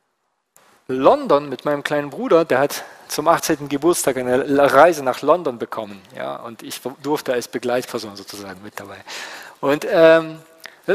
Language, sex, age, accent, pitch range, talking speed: German, male, 40-59, German, 130-180 Hz, 150 wpm